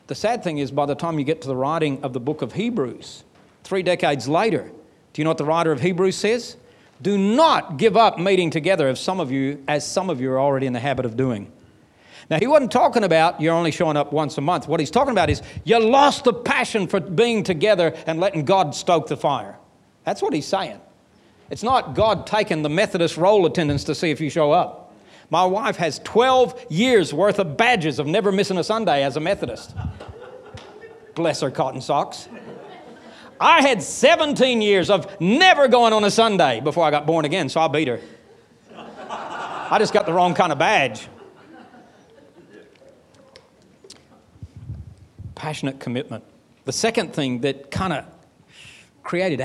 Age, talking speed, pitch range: 40-59, 185 wpm, 140-205 Hz